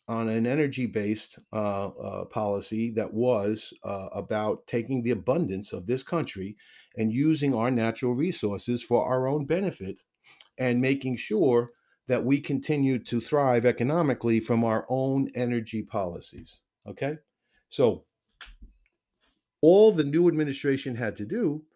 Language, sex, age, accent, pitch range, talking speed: English, male, 50-69, American, 110-145 Hz, 130 wpm